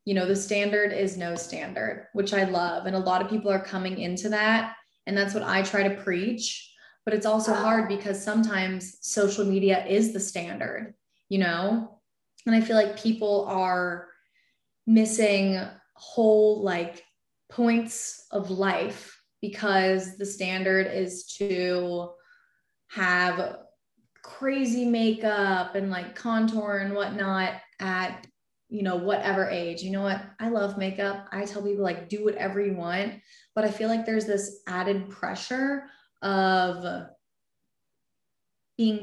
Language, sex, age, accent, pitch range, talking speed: English, female, 20-39, American, 185-215 Hz, 145 wpm